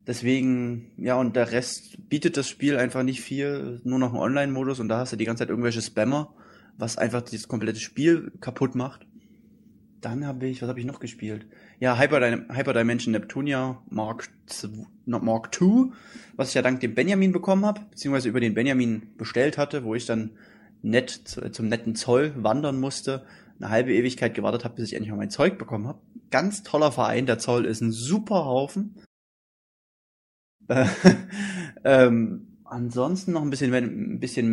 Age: 20-39